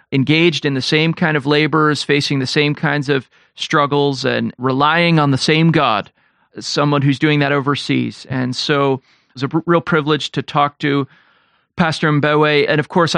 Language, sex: English, male